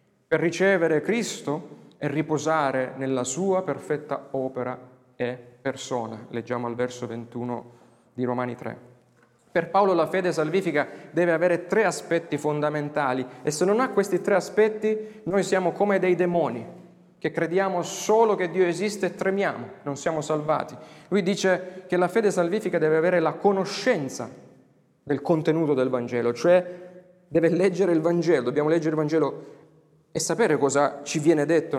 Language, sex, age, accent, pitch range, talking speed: Italian, male, 30-49, native, 140-190 Hz, 150 wpm